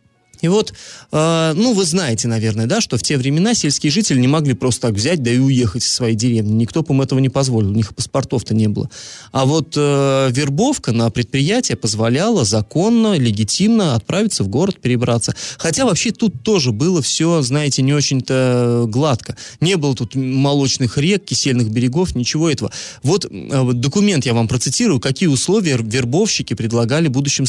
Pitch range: 120-170 Hz